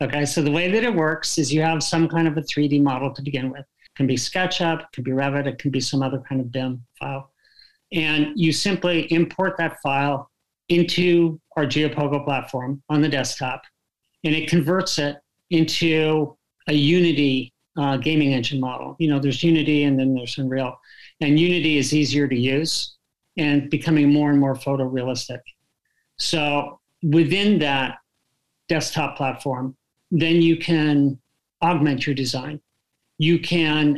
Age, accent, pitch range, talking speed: 50-69, American, 135-165 Hz, 165 wpm